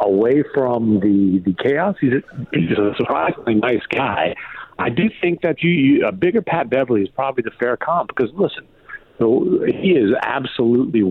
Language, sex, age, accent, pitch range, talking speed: English, male, 50-69, American, 100-135 Hz, 180 wpm